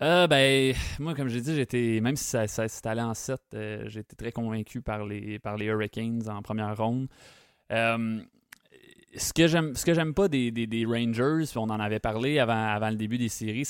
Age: 20-39